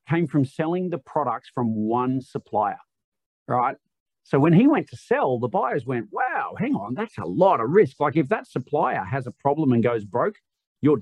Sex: male